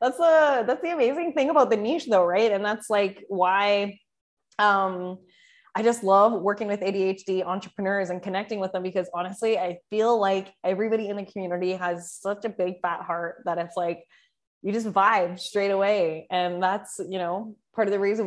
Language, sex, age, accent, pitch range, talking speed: English, female, 20-39, American, 180-210 Hz, 190 wpm